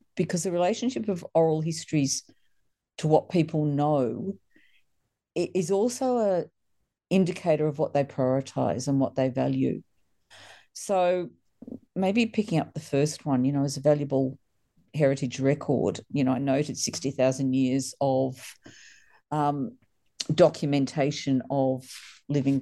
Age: 50-69